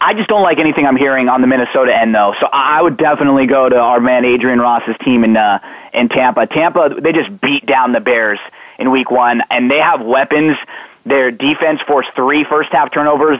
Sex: male